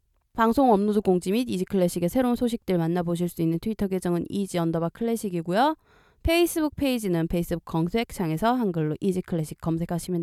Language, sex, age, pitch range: Korean, female, 20-39, 165-230 Hz